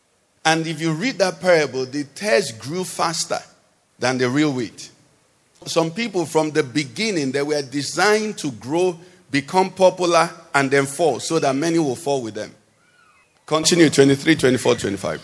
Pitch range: 150-195 Hz